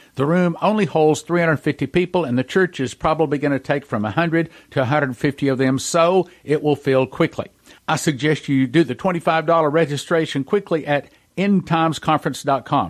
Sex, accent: male, American